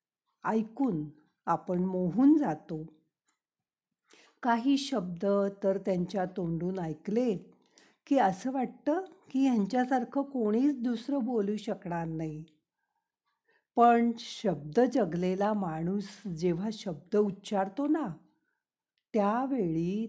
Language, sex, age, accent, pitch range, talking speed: Marathi, female, 50-69, native, 175-250 Hz, 85 wpm